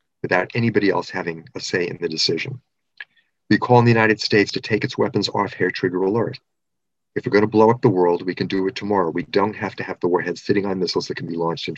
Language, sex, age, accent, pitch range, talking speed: English, male, 40-59, American, 100-125 Hz, 260 wpm